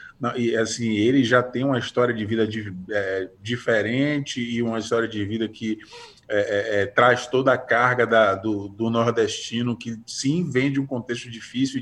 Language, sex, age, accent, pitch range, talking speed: Portuguese, male, 20-39, Brazilian, 115-165 Hz, 185 wpm